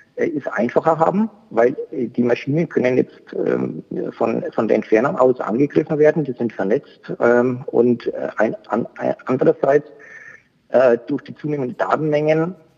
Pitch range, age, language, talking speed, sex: 125-165 Hz, 50-69, German, 115 wpm, male